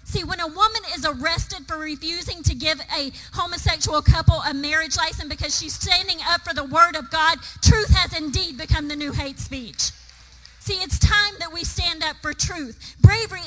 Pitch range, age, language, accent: 290-350 Hz, 40-59, English, American